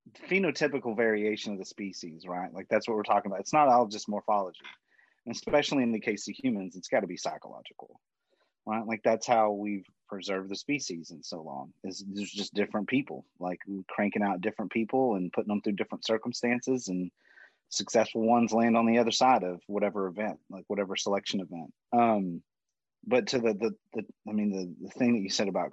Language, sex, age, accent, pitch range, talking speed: English, male, 30-49, American, 95-115 Hz, 200 wpm